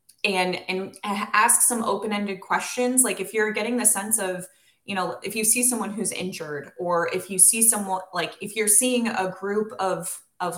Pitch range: 175-210 Hz